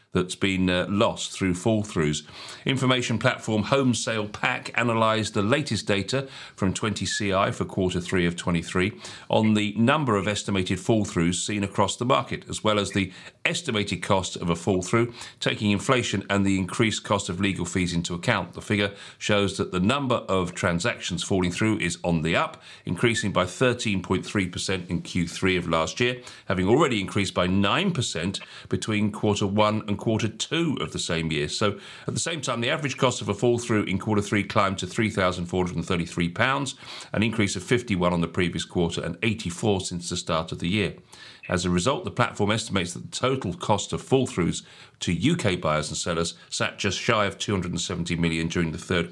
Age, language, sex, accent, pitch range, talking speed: 40-59, English, male, British, 90-110 Hz, 180 wpm